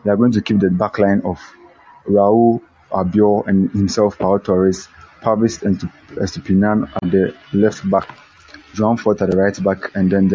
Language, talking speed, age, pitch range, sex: English, 175 wpm, 20-39, 95-110 Hz, male